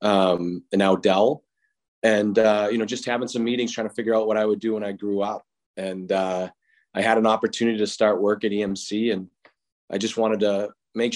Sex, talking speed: male, 220 wpm